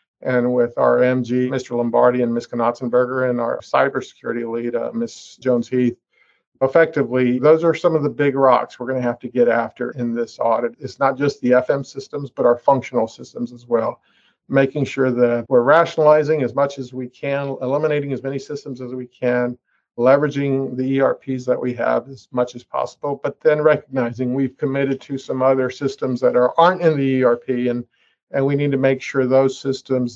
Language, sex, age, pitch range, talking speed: English, male, 50-69, 125-150 Hz, 195 wpm